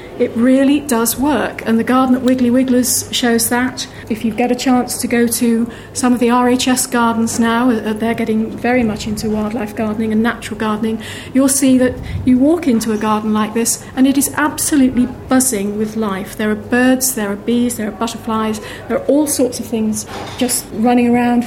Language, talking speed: English, 200 wpm